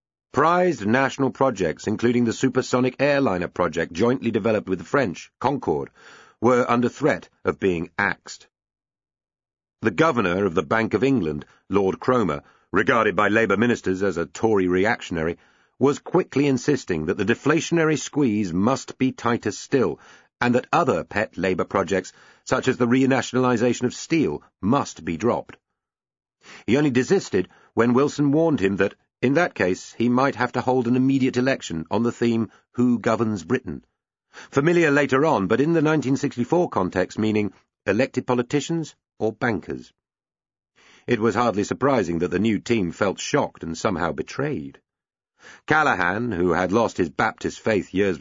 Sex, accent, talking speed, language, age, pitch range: male, British, 150 wpm, English, 50-69, 105-135 Hz